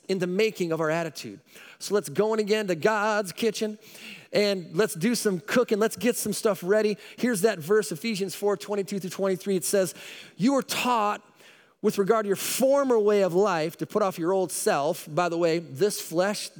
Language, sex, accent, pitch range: English, male, American, 190-235 Hz